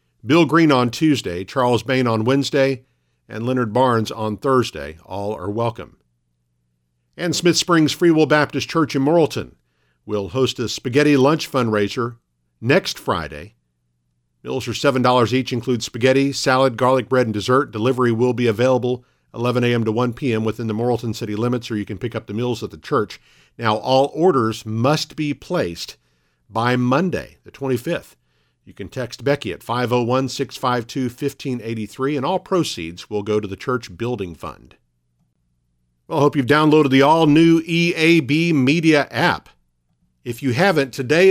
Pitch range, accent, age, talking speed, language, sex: 110-145 Hz, American, 50-69, 155 wpm, English, male